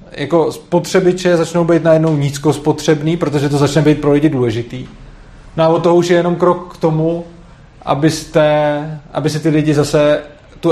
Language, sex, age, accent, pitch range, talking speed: Czech, male, 20-39, native, 105-150 Hz, 155 wpm